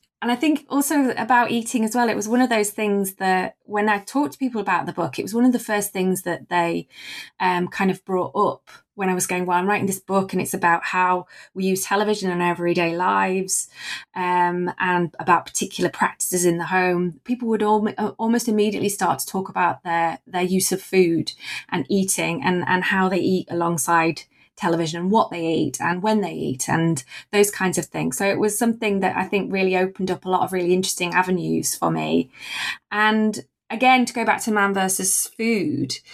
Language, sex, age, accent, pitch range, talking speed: English, female, 20-39, British, 180-215 Hz, 210 wpm